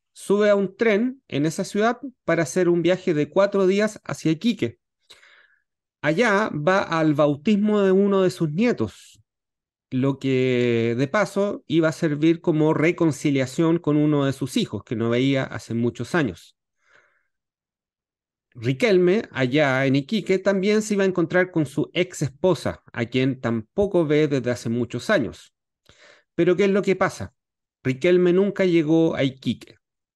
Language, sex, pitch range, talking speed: Spanish, male, 125-180 Hz, 155 wpm